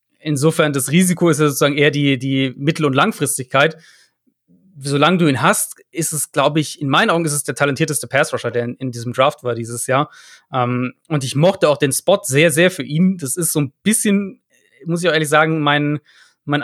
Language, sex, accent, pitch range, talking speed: German, male, German, 140-170 Hz, 215 wpm